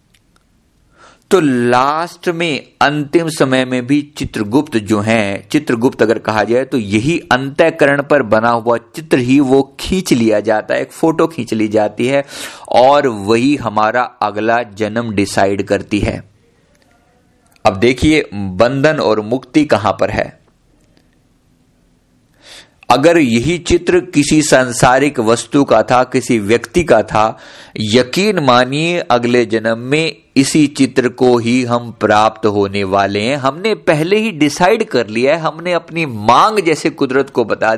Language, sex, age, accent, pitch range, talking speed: Hindi, male, 50-69, native, 110-150 Hz, 140 wpm